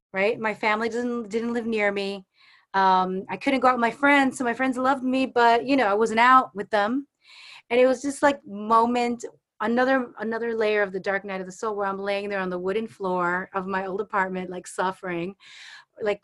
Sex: female